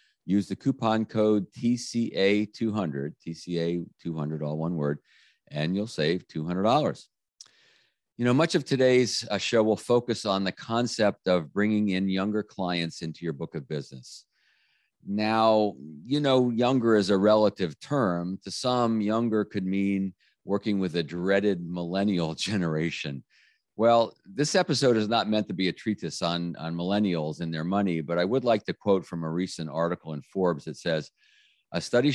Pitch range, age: 85-110 Hz, 50-69